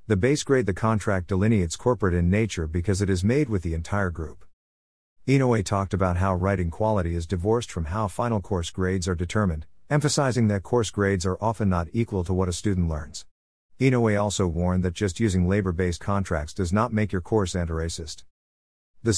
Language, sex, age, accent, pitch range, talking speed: English, male, 50-69, American, 85-110 Hz, 190 wpm